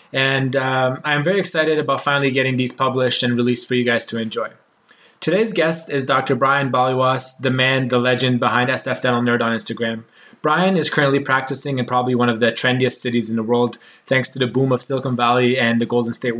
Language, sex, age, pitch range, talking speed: English, male, 20-39, 125-140 Hz, 210 wpm